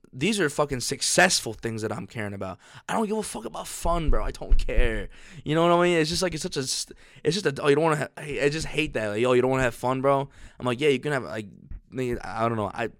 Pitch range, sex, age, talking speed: 110-135 Hz, male, 20-39, 285 wpm